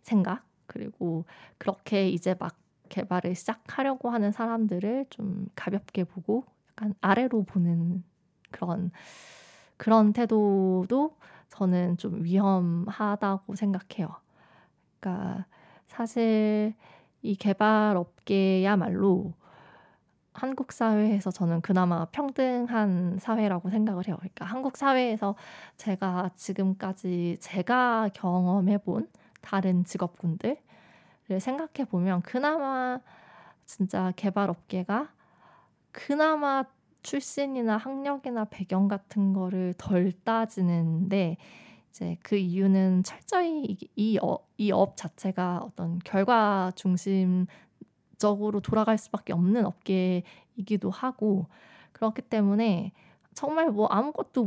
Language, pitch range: Korean, 185-225 Hz